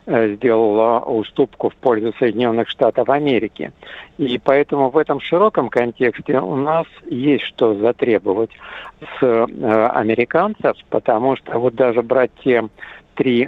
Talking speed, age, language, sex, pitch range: 120 wpm, 60-79, Russian, male, 115-135 Hz